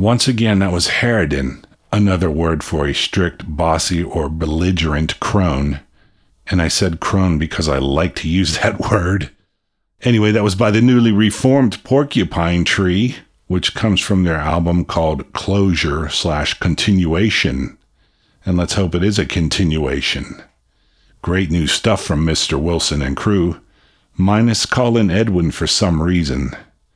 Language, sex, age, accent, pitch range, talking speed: English, male, 50-69, American, 80-100 Hz, 140 wpm